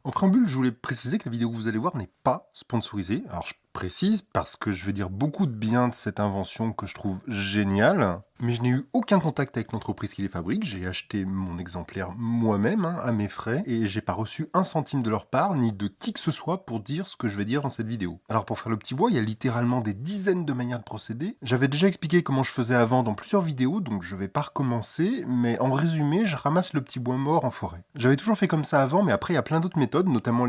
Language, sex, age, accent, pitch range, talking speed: French, male, 20-39, French, 110-155 Hz, 265 wpm